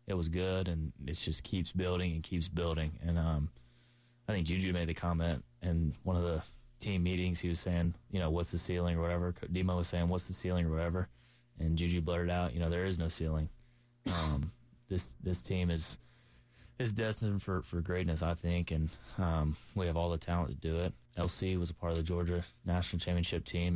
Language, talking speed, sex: English, 215 wpm, male